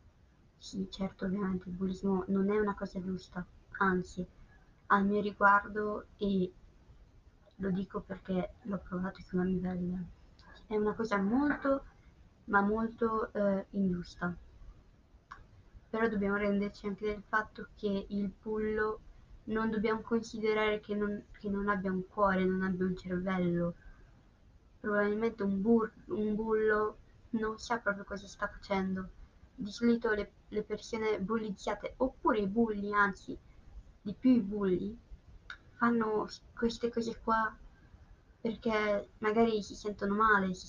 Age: 20-39